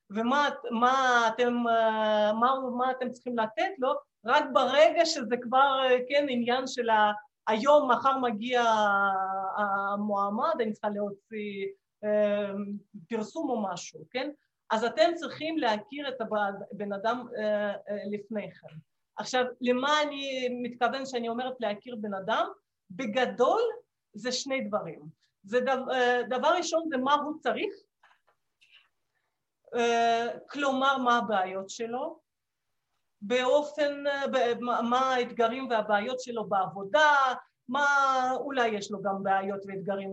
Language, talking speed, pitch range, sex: Hebrew, 110 wpm, 215-275 Hz, female